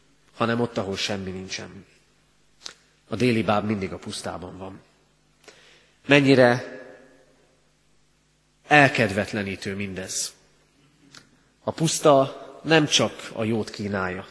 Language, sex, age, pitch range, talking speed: Hungarian, male, 30-49, 100-130 Hz, 90 wpm